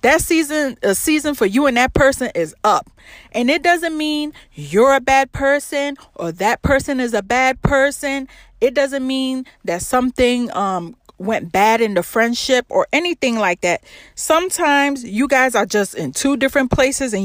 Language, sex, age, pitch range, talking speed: English, female, 30-49, 205-280 Hz, 175 wpm